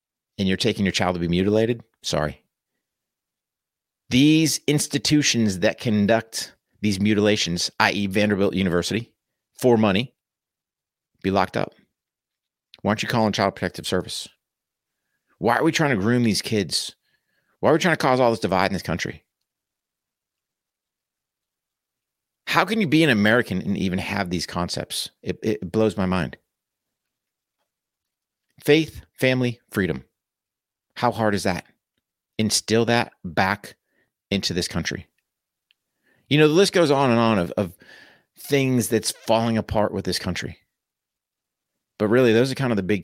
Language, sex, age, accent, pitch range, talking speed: English, male, 50-69, American, 95-120 Hz, 145 wpm